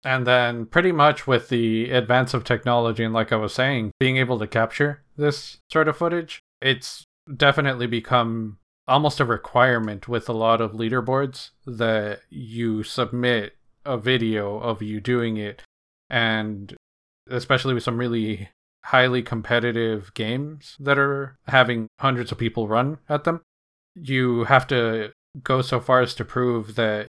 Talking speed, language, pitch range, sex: 150 wpm, English, 110-130 Hz, male